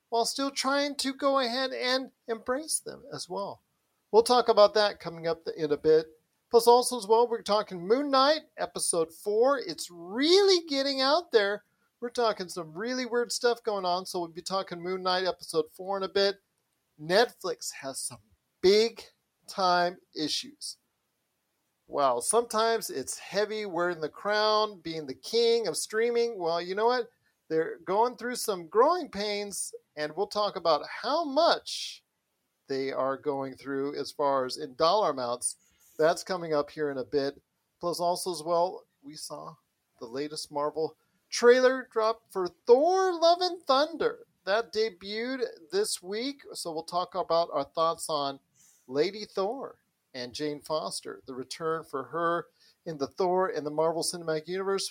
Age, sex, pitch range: 40-59, male, 160-245 Hz